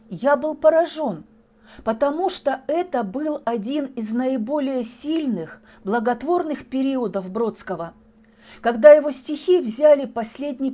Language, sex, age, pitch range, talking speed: Russian, female, 40-59, 220-290 Hz, 105 wpm